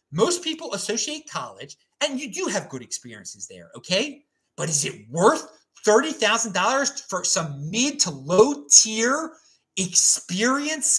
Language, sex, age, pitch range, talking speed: English, male, 30-49, 190-270 Hz, 130 wpm